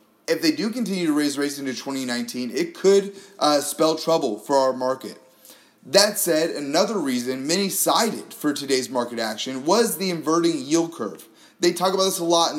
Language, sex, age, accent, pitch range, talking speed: English, male, 30-49, American, 145-200 Hz, 185 wpm